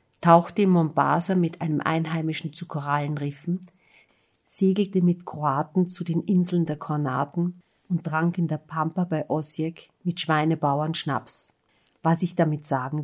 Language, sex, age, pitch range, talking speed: German, female, 50-69, 150-180 Hz, 140 wpm